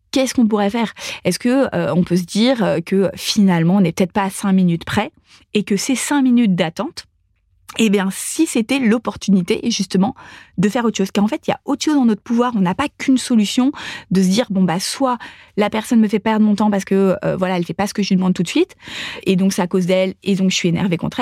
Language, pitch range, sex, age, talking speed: French, 180-225 Hz, female, 20-39, 265 wpm